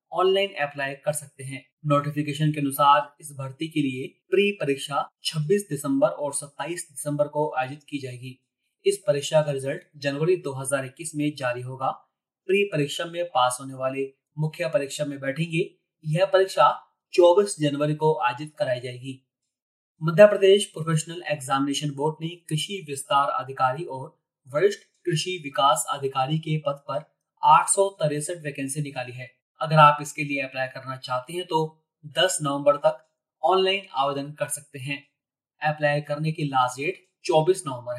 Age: 30-49